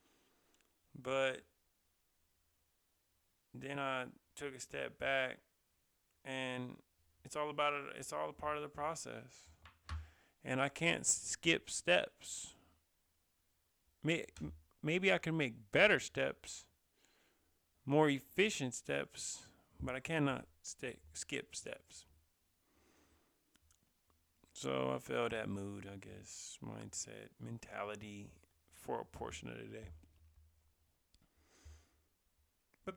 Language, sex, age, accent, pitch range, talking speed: English, male, 30-49, American, 80-130 Hz, 100 wpm